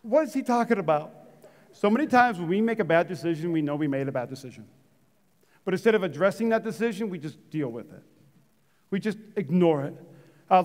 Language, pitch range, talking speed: English, 165-210 Hz, 210 wpm